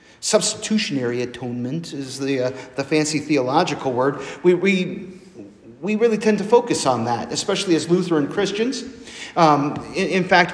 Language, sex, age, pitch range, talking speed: English, male, 40-59, 150-200 Hz, 150 wpm